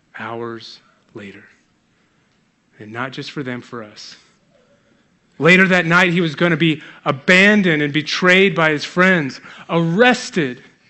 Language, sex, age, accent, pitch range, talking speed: English, male, 30-49, American, 130-180 Hz, 130 wpm